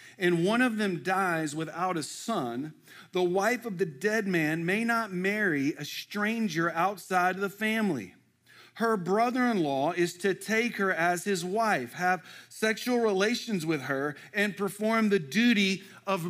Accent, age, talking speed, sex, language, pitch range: American, 40-59, 155 wpm, male, English, 125-185 Hz